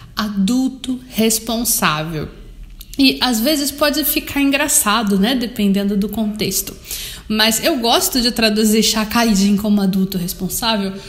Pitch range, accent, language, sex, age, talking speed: 215-275 Hz, Brazilian, Portuguese, female, 20-39, 115 wpm